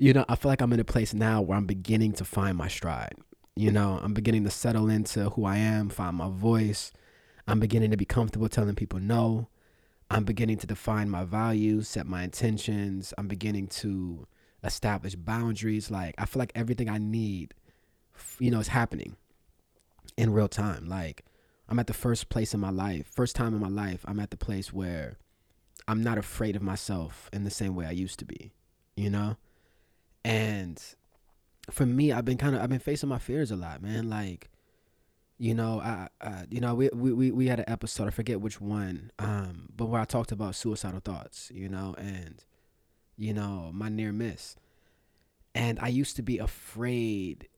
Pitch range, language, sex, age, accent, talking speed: 95-115 Hz, English, male, 20-39, American, 195 wpm